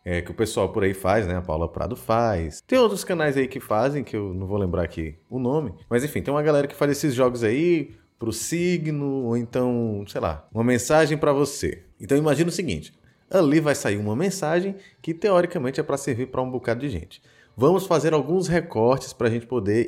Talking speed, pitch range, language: 215 wpm, 110-155 Hz, Portuguese